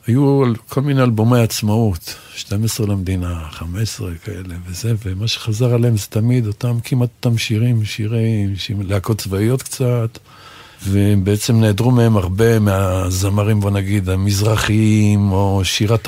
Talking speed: 125 wpm